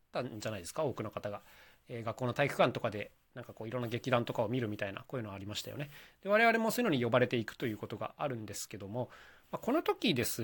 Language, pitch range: Japanese, 115-190 Hz